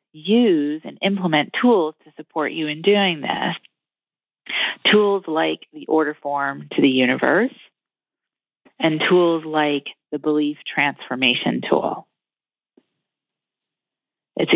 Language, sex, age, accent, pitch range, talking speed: English, female, 30-49, American, 140-175 Hz, 105 wpm